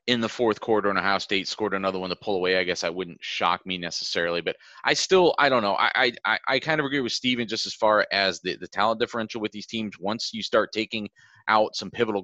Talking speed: 255 wpm